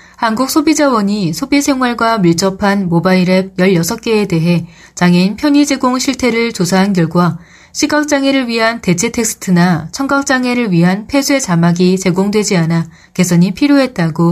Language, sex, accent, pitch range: Korean, female, native, 180-245 Hz